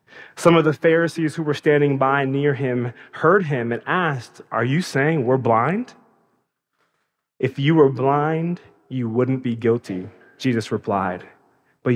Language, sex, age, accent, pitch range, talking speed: English, male, 20-39, American, 115-145 Hz, 150 wpm